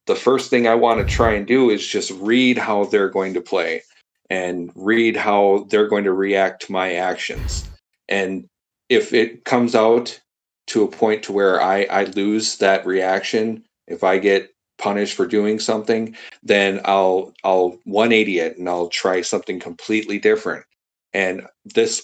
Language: English